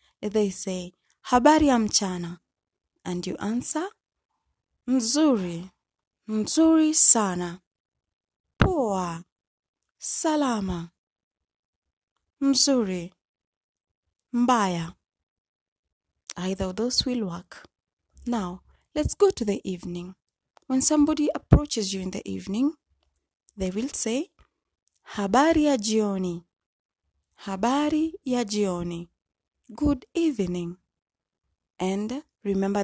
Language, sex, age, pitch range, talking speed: Swahili, female, 20-39, 190-280 Hz, 80 wpm